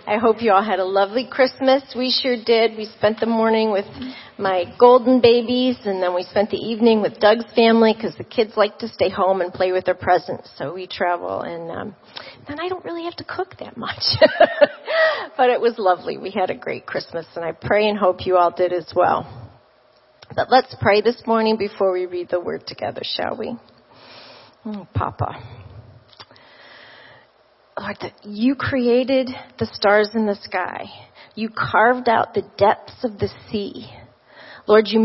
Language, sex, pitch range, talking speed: English, female, 190-240 Hz, 180 wpm